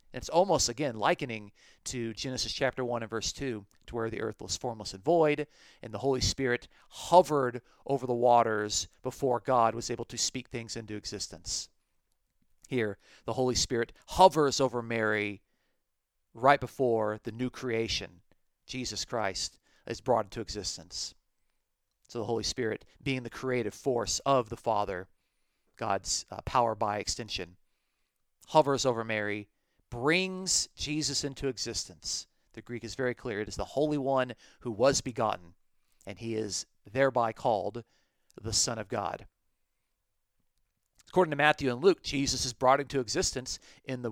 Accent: American